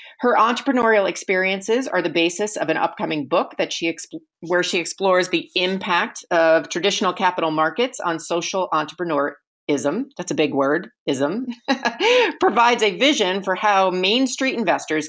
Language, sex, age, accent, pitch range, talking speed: English, female, 40-59, American, 160-215 Hz, 145 wpm